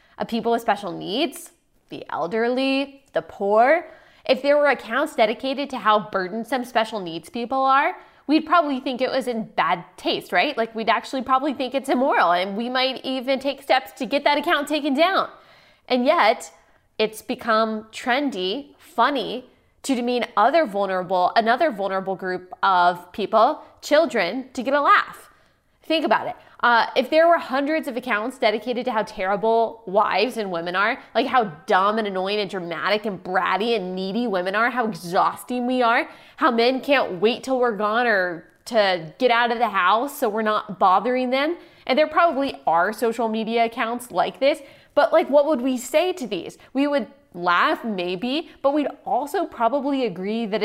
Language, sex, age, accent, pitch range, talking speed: English, female, 20-39, American, 215-280 Hz, 175 wpm